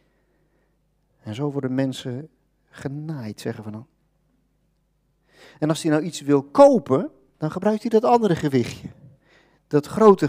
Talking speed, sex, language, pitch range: 135 wpm, male, Dutch, 140-170 Hz